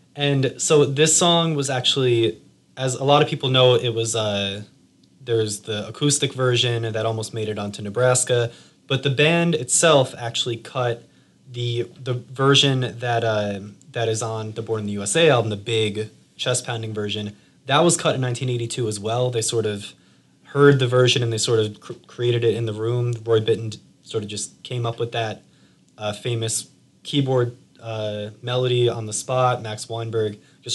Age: 20-39